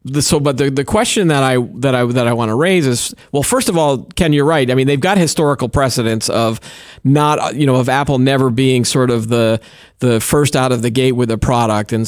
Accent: American